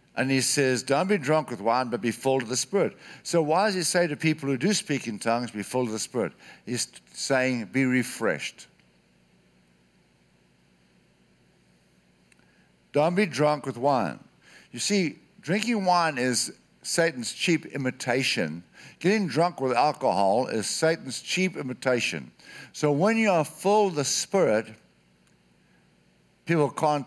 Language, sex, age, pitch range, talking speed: English, male, 60-79, 110-165 Hz, 145 wpm